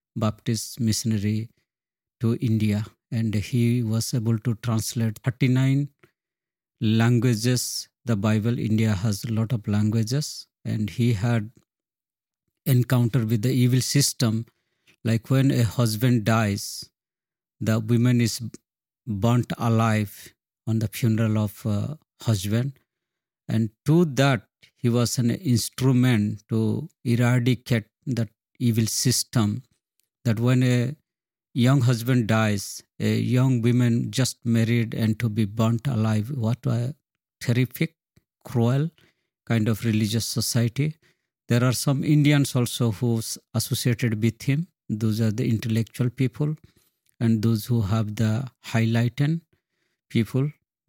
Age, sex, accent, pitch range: 50-69, male, Indian, 110-125 Hz